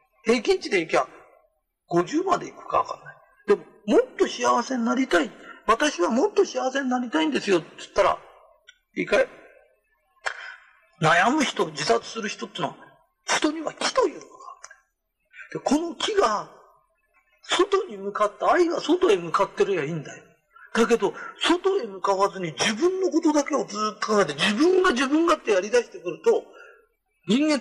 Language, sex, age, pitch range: Japanese, male, 40-59, 230-355 Hz